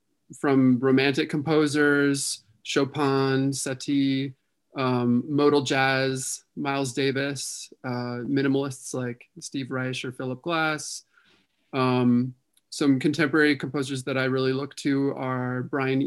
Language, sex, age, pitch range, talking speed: English, male, 30-49, 130-145 Hz, 105 wpm